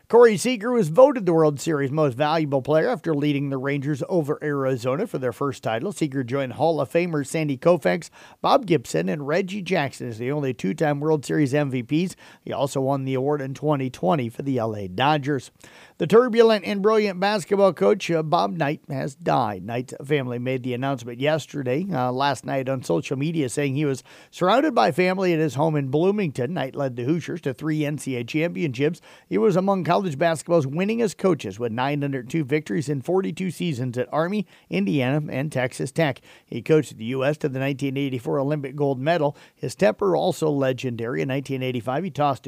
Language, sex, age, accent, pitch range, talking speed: English, male, 50-69, American, 130-170 Hz, 180 wpm